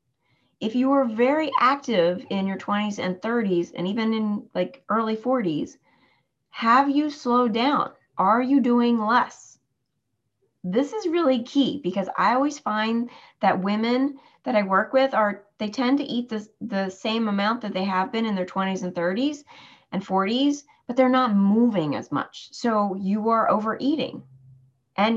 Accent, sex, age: American, female, 30-49